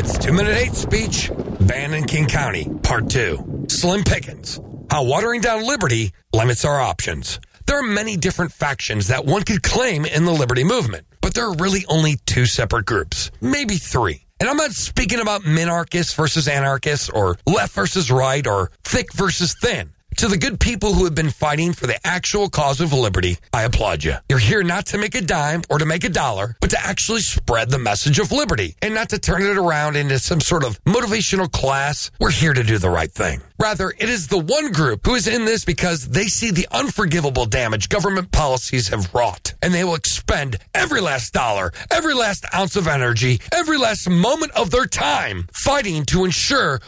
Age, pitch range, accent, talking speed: 40-59, 125-190 Hz, American, 200 wpm